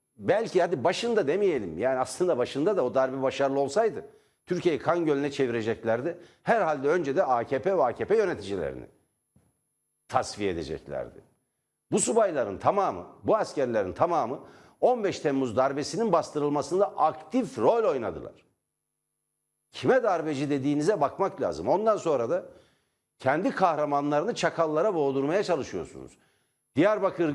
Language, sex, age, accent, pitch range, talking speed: Turkish, male, 60-79, native, 145-215 Hz, 115 wpm